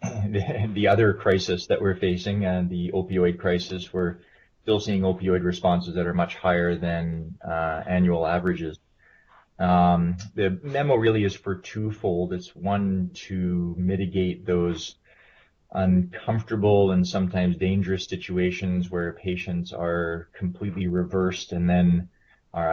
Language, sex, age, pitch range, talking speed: English, male, 20-39, 85-95 Hz, 130 wpm